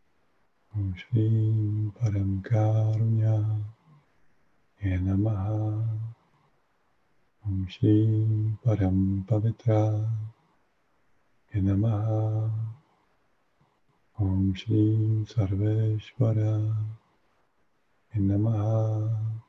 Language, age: Czech, 50-69